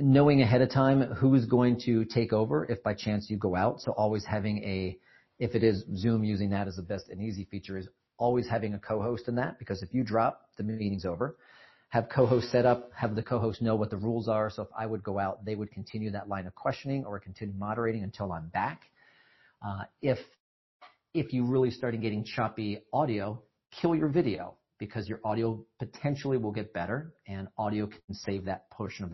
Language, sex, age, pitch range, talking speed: English, male, 40-59, 105-130 Hz, 215 wpm